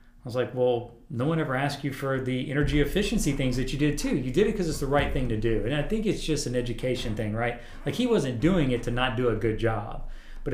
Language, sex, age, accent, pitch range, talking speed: English, male, 40-59, American, 115-145 Hz, 280 wpm